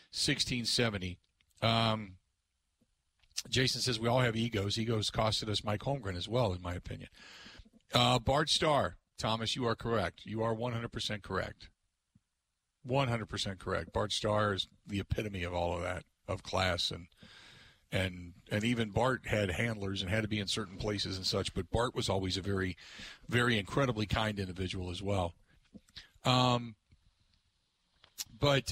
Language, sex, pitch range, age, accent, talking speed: English, male, 95-125 Hz, 50-69, American, 155 wpm